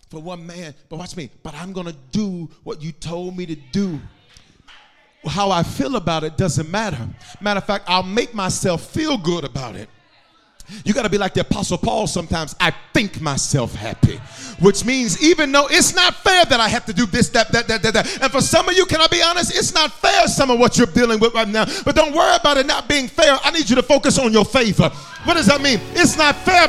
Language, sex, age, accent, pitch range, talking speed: English, male, 40-59, American, 175-240 Hz, 245 wpm